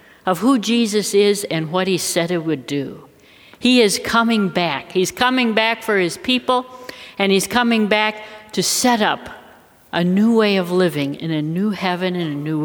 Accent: American